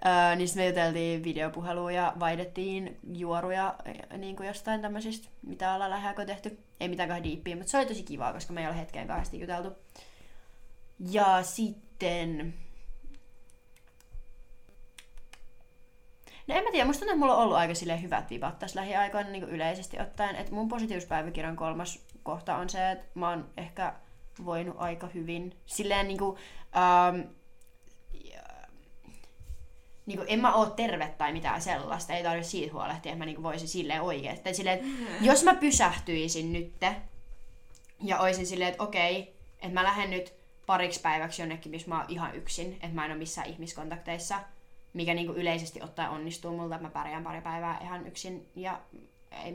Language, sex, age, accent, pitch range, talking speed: Finnish, female, 20-39, native, 165-190 Hz, 150 wpm